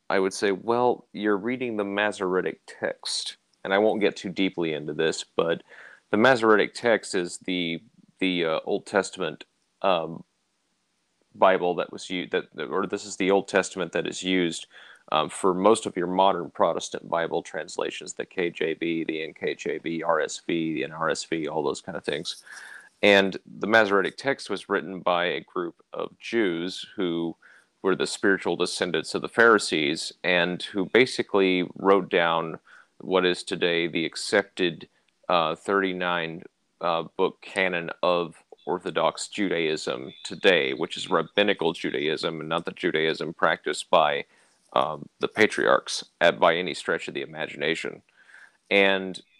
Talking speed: 145 wpm